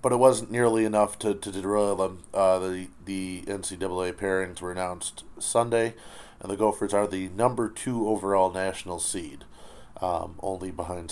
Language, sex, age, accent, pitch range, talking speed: English, male, 30-49, American, 90-110 Hz, 160 wpm